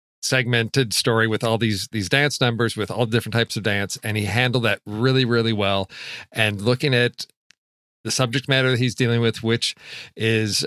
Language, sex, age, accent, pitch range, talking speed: English, male, 40-59, American, 110-130 Hz, 185 wpm